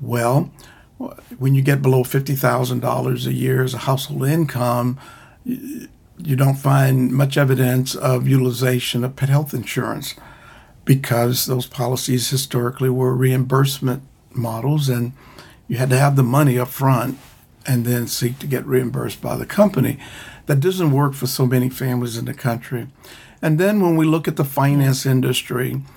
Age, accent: 50-69, American